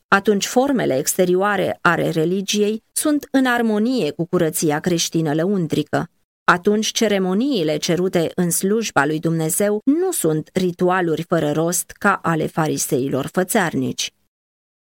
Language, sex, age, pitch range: Romanian, female, 30-49, 165-230 Hz